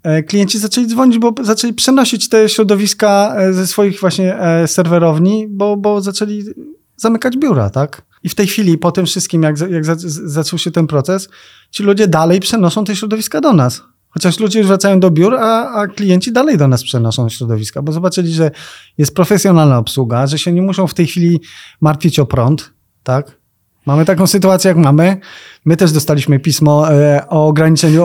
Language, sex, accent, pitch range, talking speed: Polish, male, native, 145-200 Hz, 175 wpm